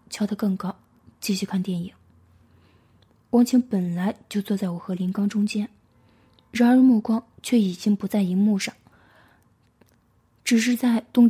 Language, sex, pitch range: Chinese, female, 185-220 Hz